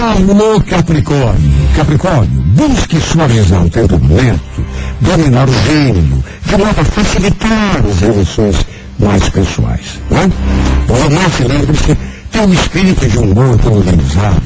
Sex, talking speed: male, 145 wpm